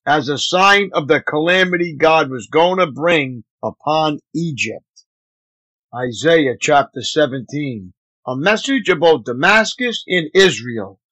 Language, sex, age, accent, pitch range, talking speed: English, male, 50-69, American, 150-195 Hz, 120 wpm